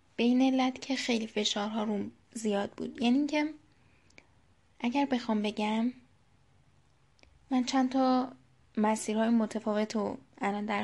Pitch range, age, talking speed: 210-260 Hz, 10-29, 125 wpm